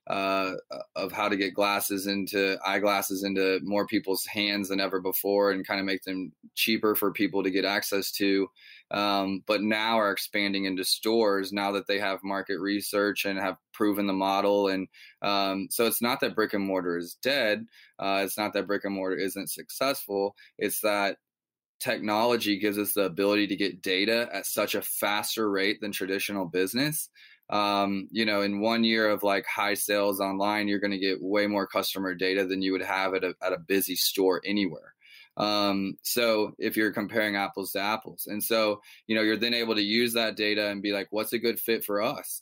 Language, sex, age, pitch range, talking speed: English, male, 20-39, 95-105 Hz, 200 wpm